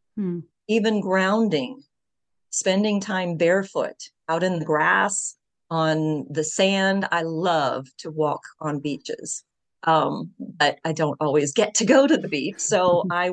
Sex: female